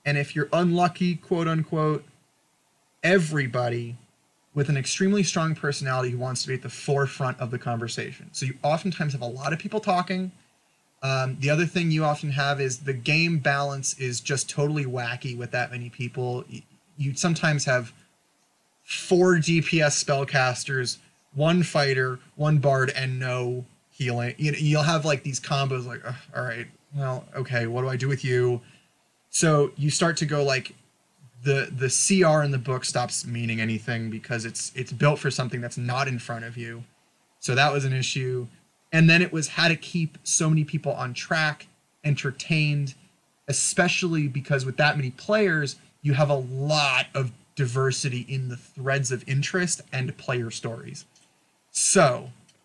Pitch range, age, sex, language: 130-160 Hz, 20-39, male, English